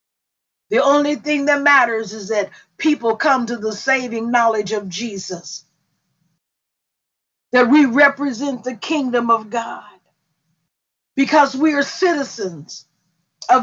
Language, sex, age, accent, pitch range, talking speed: English, female, 50-69, American, 225-295 Hz, 120 wpm